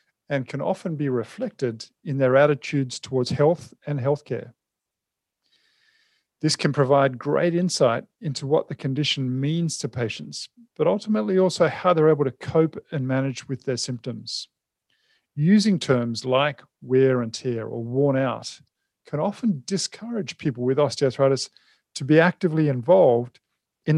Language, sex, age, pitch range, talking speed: English, male, 40-59, 125-165 Hz, 145 wpm